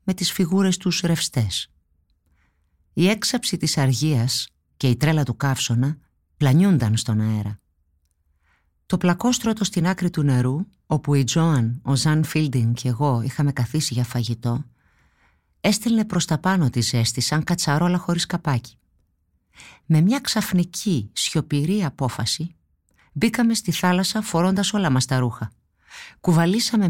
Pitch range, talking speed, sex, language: 120-170 Hz, 130 wpm, female, Greek